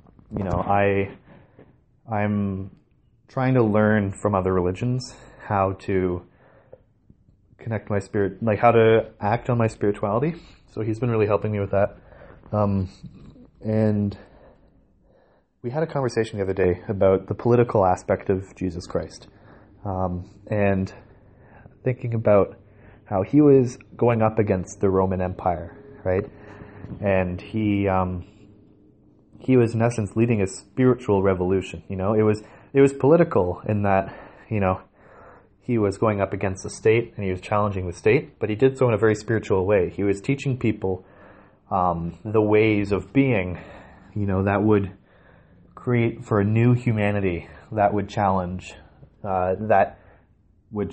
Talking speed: 150 wpm